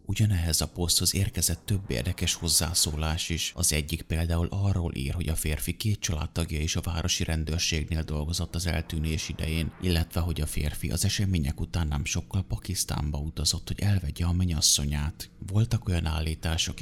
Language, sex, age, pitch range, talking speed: Hungarian, male, 30-49, 80-90 Hz, 155 wpm